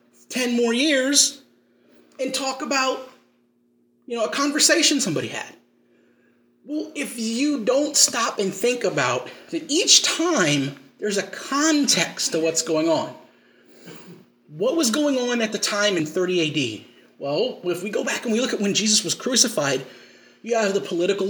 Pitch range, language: 155-230 Hz, English